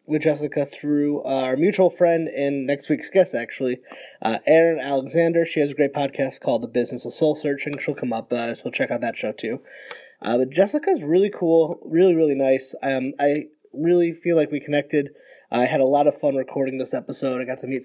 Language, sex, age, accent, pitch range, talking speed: English, male, 20-39, American, 135-170 Hz, 215 wpm